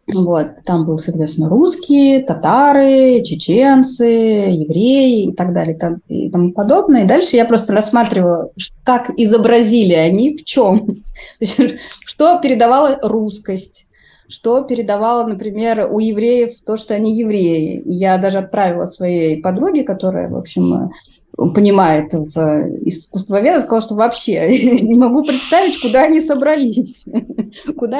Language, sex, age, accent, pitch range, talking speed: Russian, female, 20-39, native, 190-255 Hz, 125 wpm